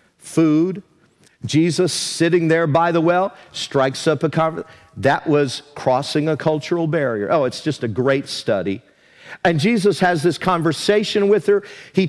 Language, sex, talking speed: English, male, 155 wpm